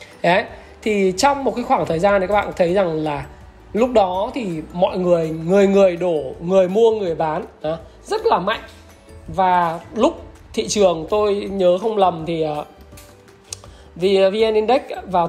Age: 20-39